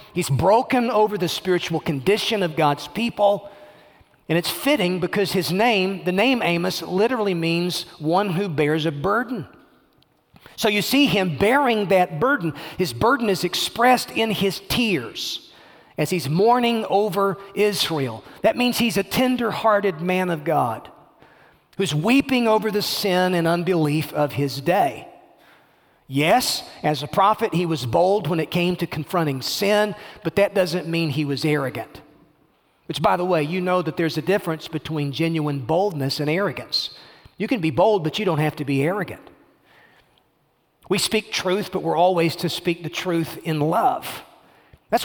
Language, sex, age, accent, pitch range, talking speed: English, male, 40-59, American, 160-205 Hz, 165 wpm